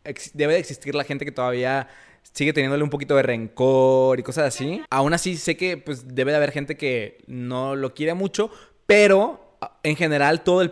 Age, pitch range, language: 20-39, 130-170 Hz, Spanish